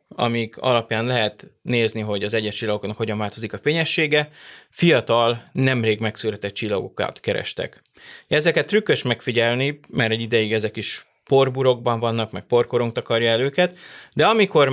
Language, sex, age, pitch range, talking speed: Hungarian, male, 20-39, 110-130 Hz, 140 wpm